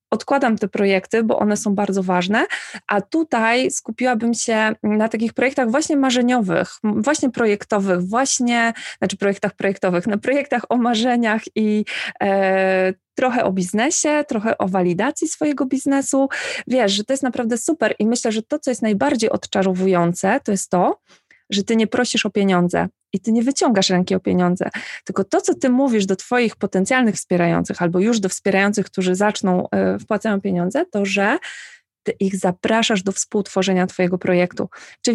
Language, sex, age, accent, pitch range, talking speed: Polish, female, 20-39, native, 190-235 Hz, 160 wpm